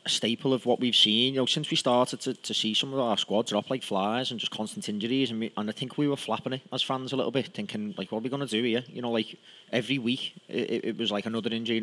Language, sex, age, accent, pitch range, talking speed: English, male, 30-49, British, 110-130 Hz, 300 wpm